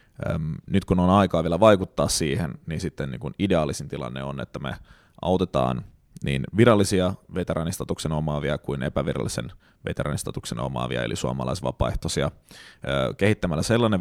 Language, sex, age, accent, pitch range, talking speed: Finnish, male, 30-49, native, 80-100 Hz, 120 wpm